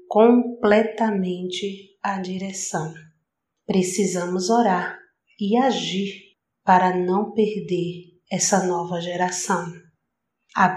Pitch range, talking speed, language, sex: 185-230 Hz, 80 wpm, Portuguese, female